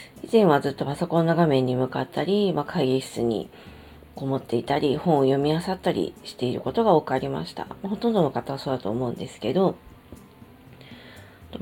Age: 40-59